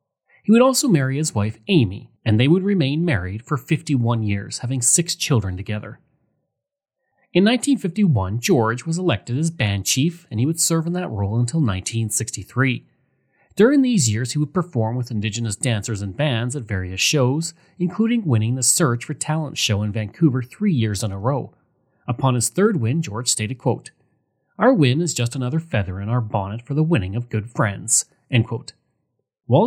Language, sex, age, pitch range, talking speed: English, male, 30-49, 115-160 Hz, 180 wpm